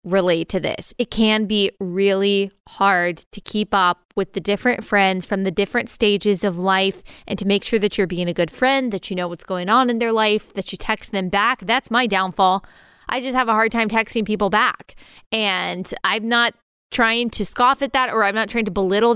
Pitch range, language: 195-235 Hz, English